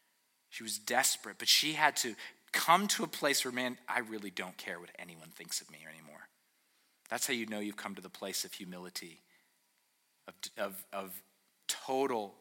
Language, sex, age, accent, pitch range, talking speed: English, male, 30-49, American, 110-140 Hz, 185 wpm